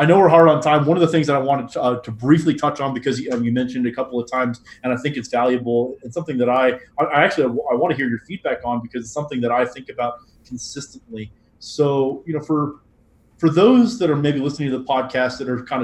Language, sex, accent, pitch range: English, male, American, 125-155 Hz